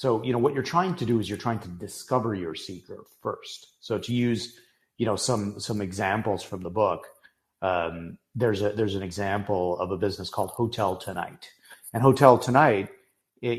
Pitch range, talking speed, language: 100-125 Hz, 190 wpm, English